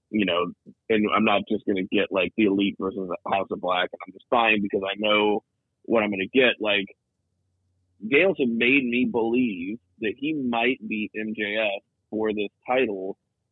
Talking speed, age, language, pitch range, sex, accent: 190 wpm, 30-49, English, 105-145 Hz, male, American